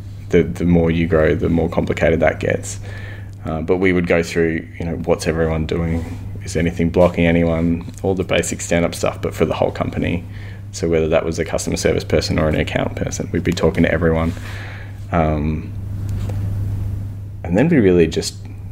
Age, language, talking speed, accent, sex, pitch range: 20-39, English, 190 wpm, Australian, male, 85-100 Hz